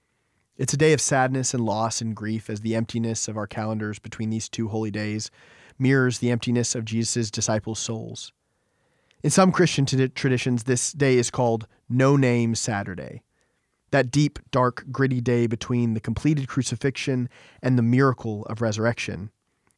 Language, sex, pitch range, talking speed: English, male, 110-130 Hz, 155 wpm